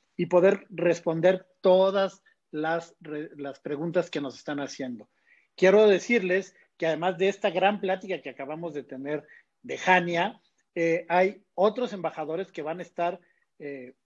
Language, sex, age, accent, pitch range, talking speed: Spanish, male, 40-59, Mexican, 155-190 Hz, 150 wpm